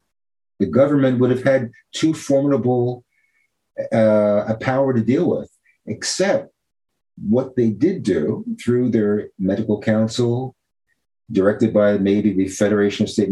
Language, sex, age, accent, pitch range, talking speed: English, male, 50-69, American, 105-135 Hz, 130 wpm